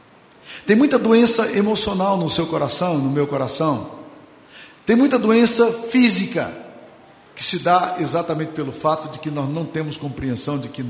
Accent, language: Brazilian, Portuguese